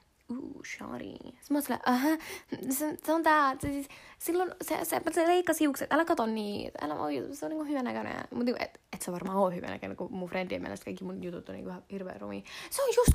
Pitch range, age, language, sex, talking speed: 185-265 Hz, 10-29, Finnish, female, 235 wpm